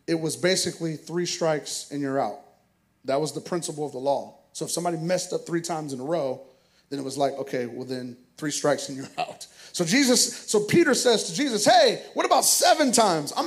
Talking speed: 225 wpm